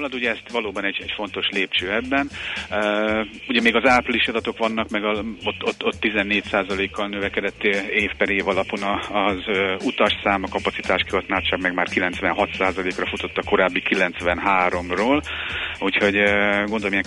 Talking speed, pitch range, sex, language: 145 wpm, 95-105 Hz, male, Hungarian